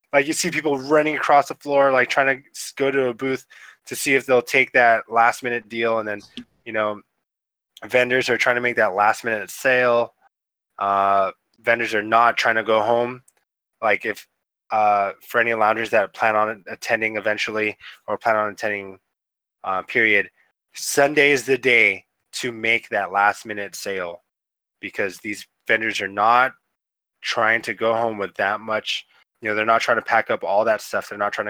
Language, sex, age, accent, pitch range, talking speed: English, male, 20-39, American, 105-125 Hz, 180 wpm